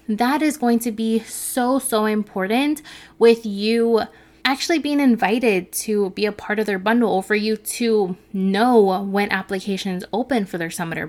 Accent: American